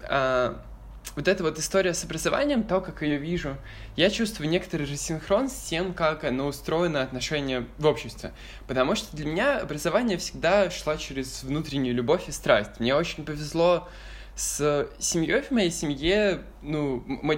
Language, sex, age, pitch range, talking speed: Russian, male, 10-29, 115-175 Hz, 165 wpm